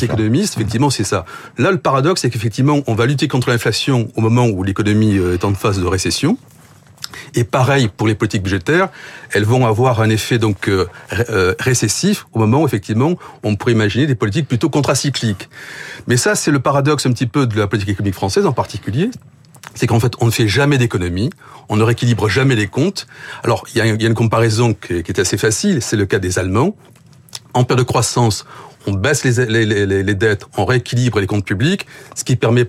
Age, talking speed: 40-59, 200 wpm